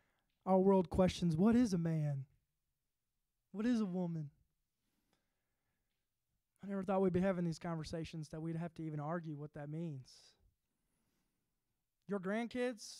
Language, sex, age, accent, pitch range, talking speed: English, male, 20-39, American, 170-280 Hz, 140 wpm